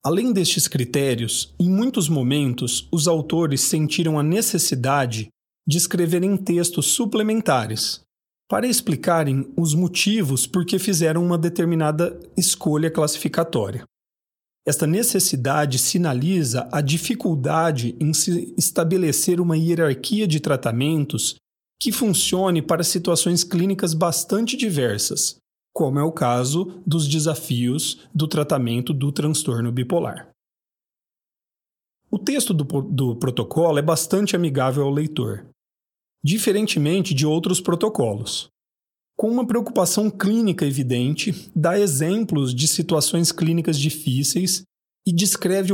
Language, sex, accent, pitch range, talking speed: Portuguese, male, Brazilian, 145-185 Hz, 110 wpm